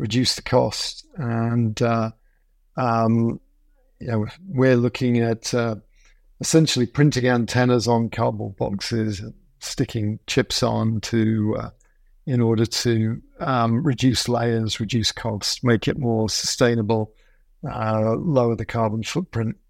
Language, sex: English, male